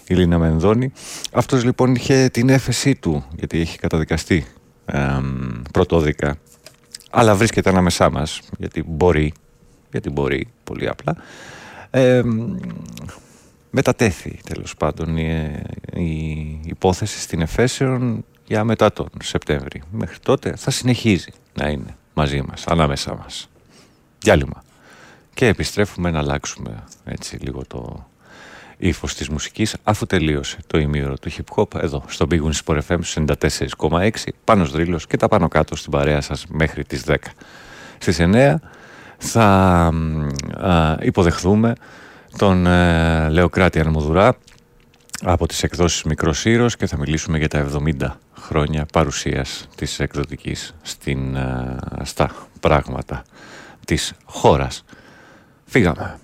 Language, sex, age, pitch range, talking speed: Greek, male, 40-59, 75-100 Hz, 115 wpm